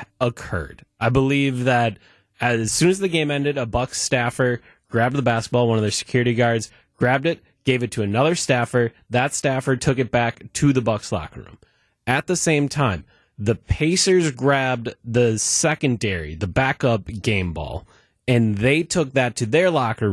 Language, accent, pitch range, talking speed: English, American, 115-155 Hz, 175 wpm